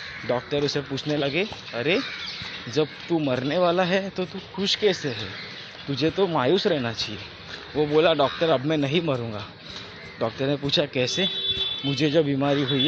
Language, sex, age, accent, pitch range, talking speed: Hindi, male, 20-39, native, 130-175 Hz, 165 wpm